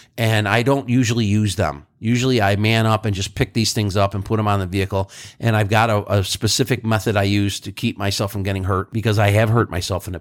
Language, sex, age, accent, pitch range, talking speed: English, male, 50-69, American, 100-120 Hz, 260 wpm